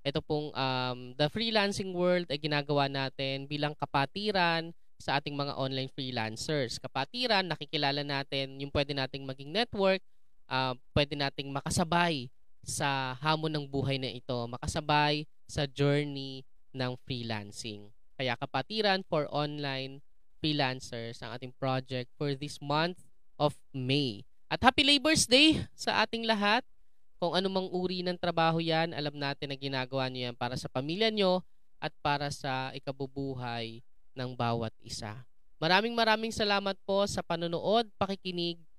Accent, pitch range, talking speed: Filipino, 135-185 Hz, 140 wpm